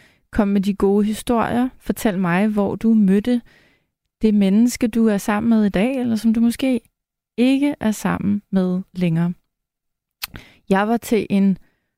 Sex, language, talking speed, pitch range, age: female, Danish, 155 wpm, 190-230 Hz, 30-49